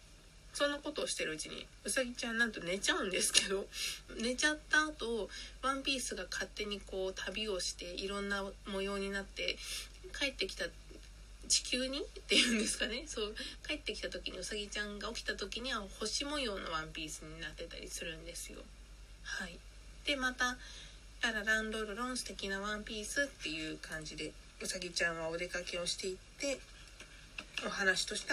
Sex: female